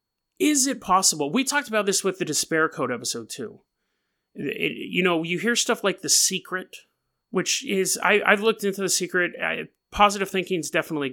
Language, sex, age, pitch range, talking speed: English, male, 30-49, 140-190 Hz, 175 wpm